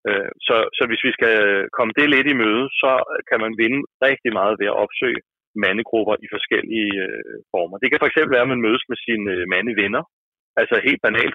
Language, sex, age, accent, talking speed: Danish, male, 30-49, native, 190 wpm